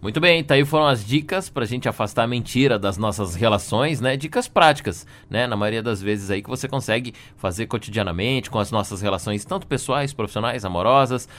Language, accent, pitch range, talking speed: Portuguese, Brazilian, 100-130 Hz, 195 wpm